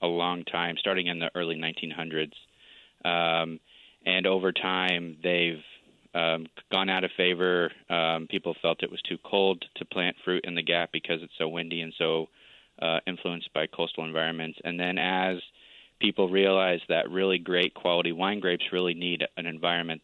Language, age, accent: English, 20-39, American